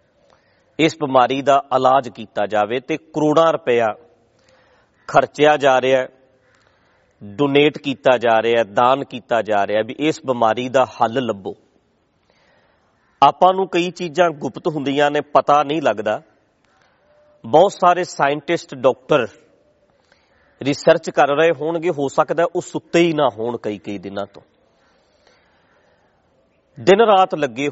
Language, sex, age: English, male, 40-59